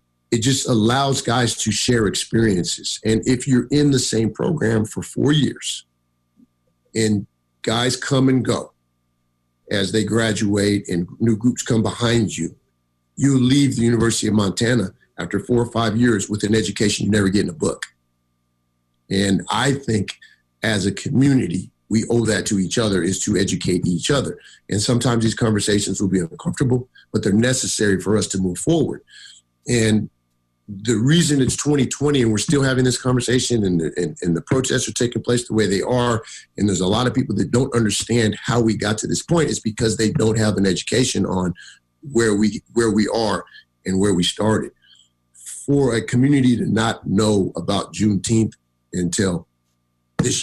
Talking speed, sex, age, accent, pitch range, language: 175 wpm, male, 50-69, American, 90-120 Hz, English